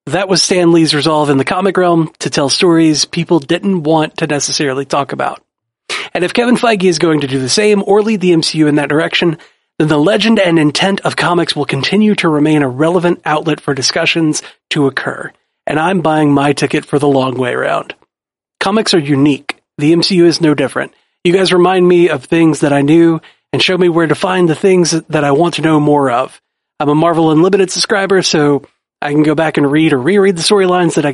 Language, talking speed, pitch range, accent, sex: English, 220 wpm, 145-175 Hz, American, male